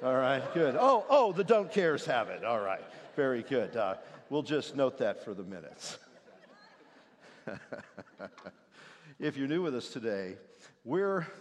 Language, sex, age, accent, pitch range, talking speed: English, male, 50-69, American, 120-160 Hz, 155 wpm